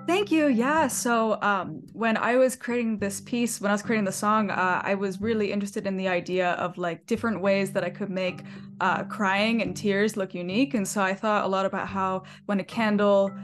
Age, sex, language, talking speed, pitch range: 20-39, female, English, 225 wpm, 190-220 Hz